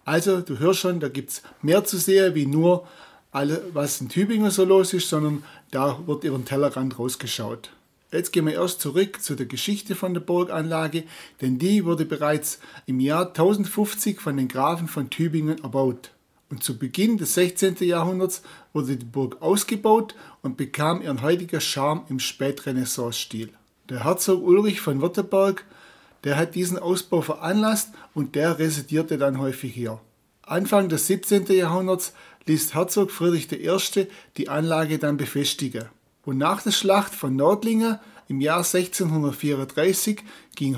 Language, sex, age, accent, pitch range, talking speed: German, male, 60-79, German, 140-185 Hz, 150 wpm